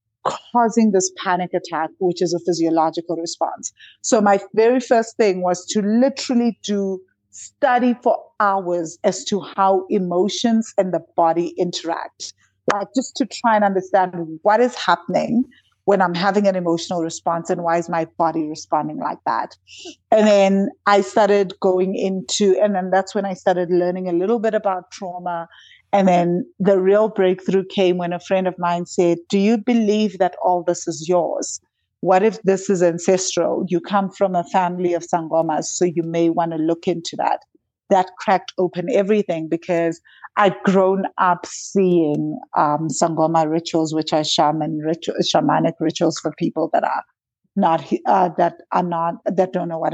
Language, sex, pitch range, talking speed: English, female, 170-200 Hz, 170 wpm